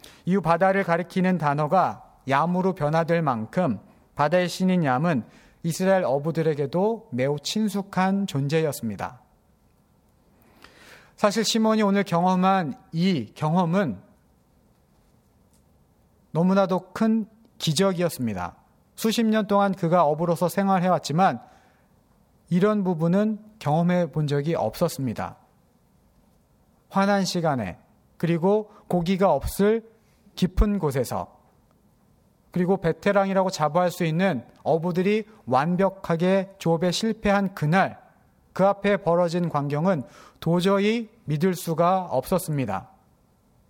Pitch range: 155-200 Hz